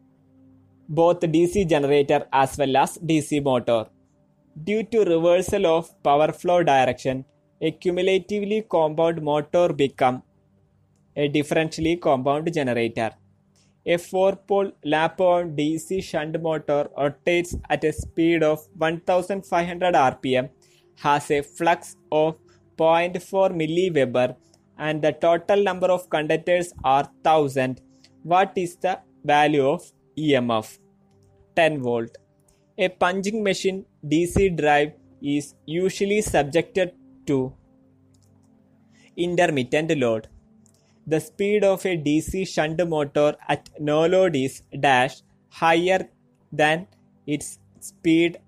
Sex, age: male, 20-39